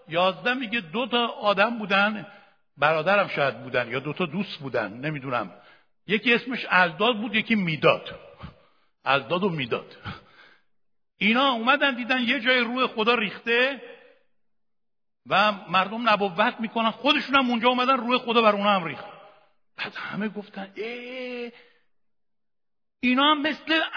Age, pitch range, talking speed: 60-79, 200-260 Hz, 125 wpm